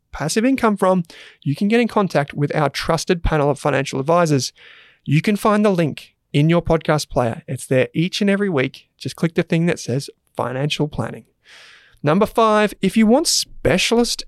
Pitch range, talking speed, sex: 145-200 Hz, 185 wpm, male